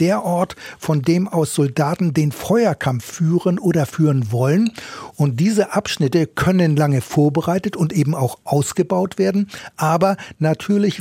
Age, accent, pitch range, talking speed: 60-79, German, 145-180 Hz, 135 wpm